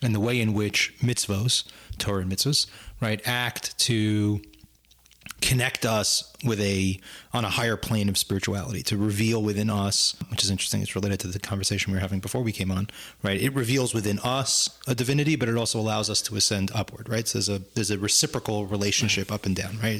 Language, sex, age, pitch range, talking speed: English, male, 30-49, 100-125 Hz, 205 wpm